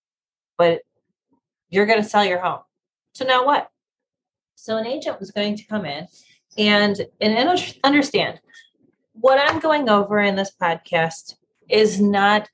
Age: 30-49